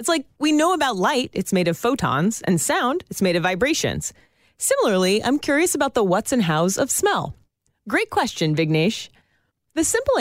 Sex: female